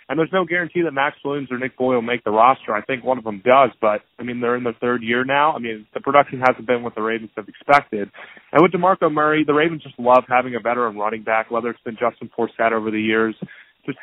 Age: 20-39